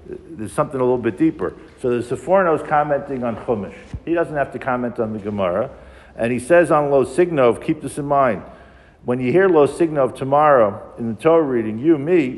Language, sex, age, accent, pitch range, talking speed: English, male, 50-69, American, 120-160 Hz, 205 wpm